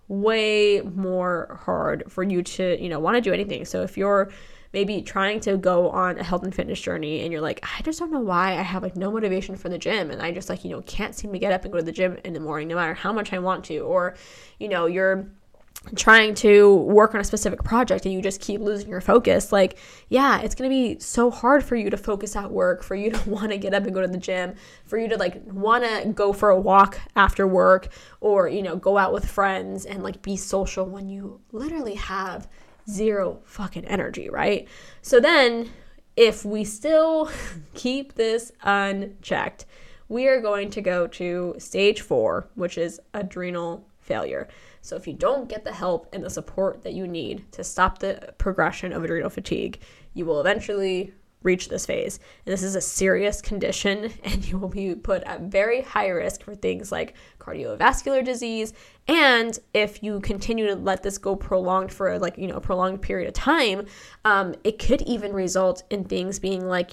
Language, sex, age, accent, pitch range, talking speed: English, female, 10-29, American, 185-215 Hz, 210 wpm